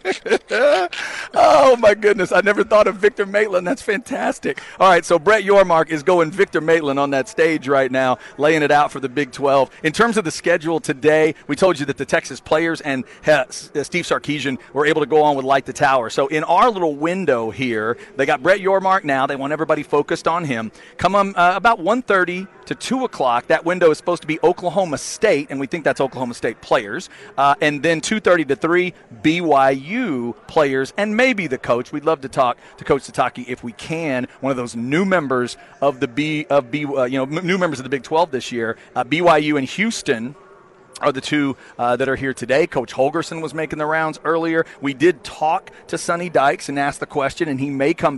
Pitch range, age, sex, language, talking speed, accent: 135-175 Hz, 40-59, male, English, 215 wpm, American